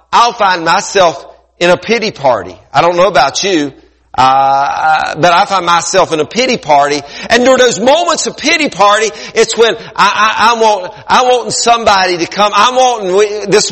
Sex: male